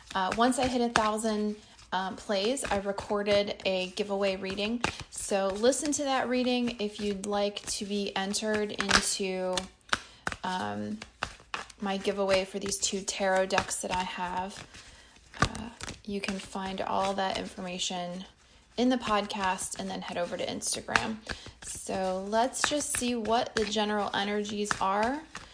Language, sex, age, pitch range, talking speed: English, female, 20-39, 190-225 Hz, 140 wpm